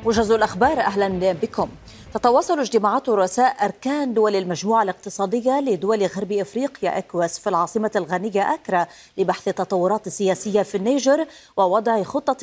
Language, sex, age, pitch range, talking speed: Arabic, female, 30-49, 185-225 Hz, 125 wpm